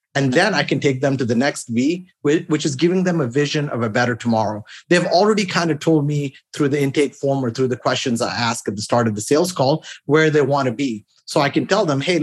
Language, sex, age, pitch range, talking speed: English, male, 30-49, 130-160 Hz, 265 wpm